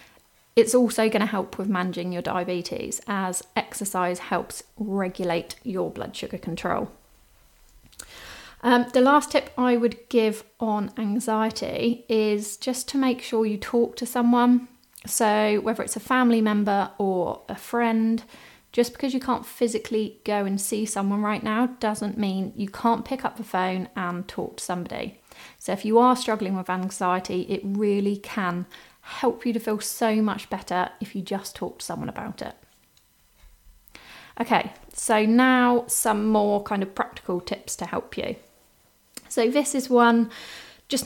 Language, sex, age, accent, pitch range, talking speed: English, female, 30-49, British, 200-235 Hz, 160 wpm